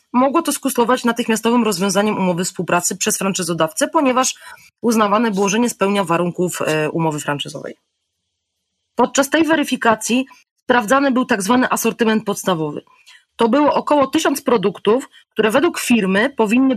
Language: Polish